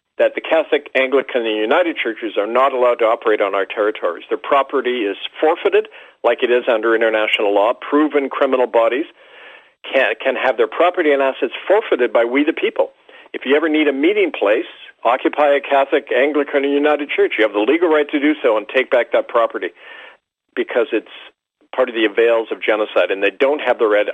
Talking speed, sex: 200 wpm, male